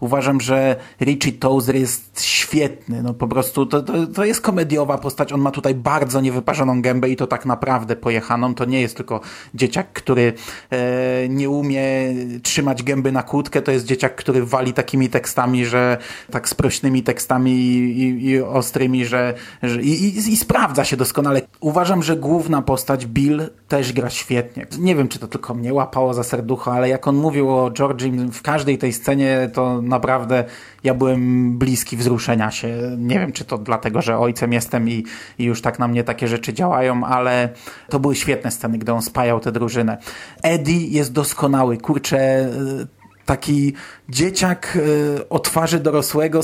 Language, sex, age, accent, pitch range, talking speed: Polish, male, 30-49, native, 125-145 Hz, 170 wpm